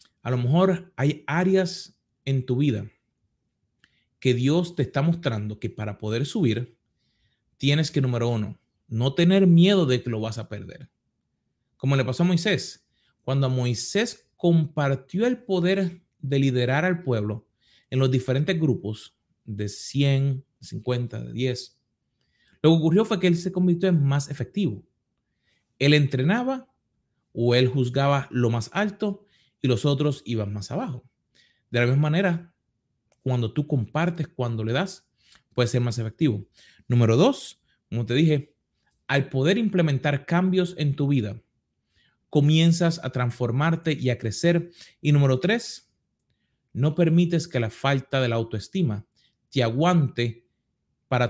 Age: 30-49